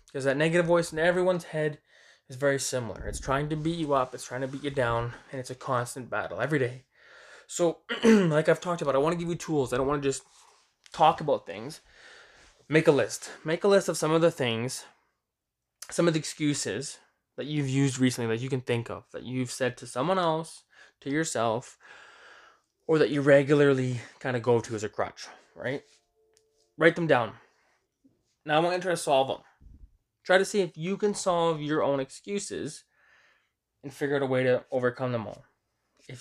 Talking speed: 205 wpm